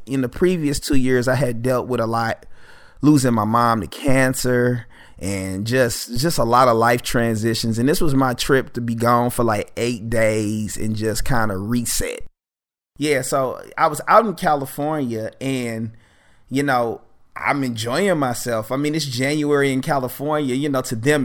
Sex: male